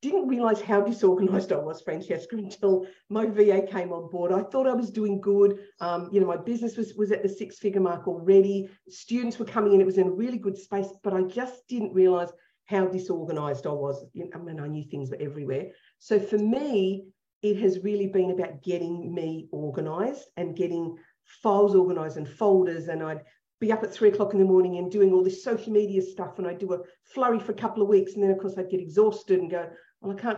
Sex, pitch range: female, 185-220 Hz